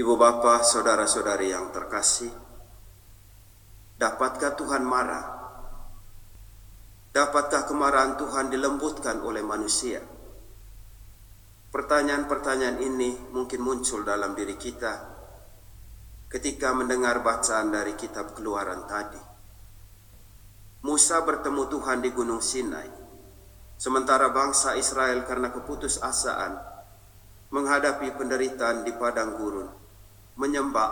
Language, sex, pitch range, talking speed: Indonesian, male, 100-135 Hz, 85 wpm